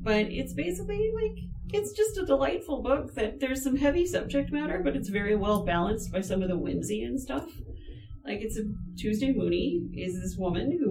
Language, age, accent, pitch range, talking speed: English, 40-59, American, 165-210 Hz, 200 wpm